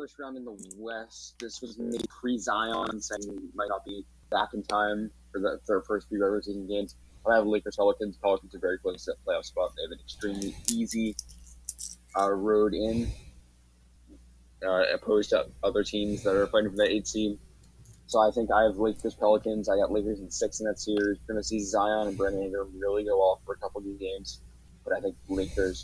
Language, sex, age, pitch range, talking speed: English, male, 20-39, 85-110 Hz, 210 wpm